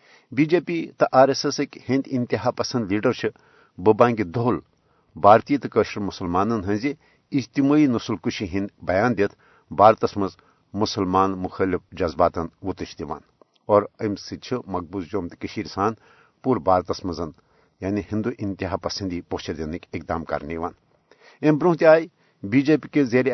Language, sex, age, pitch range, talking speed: Urdu, male, 60-79, 100-135 Hz, 145 wpm